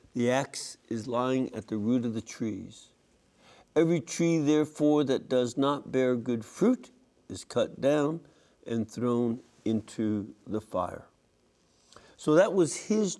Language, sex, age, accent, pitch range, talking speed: English, male, 60-79, American, 115-150 Hz, 140 wpm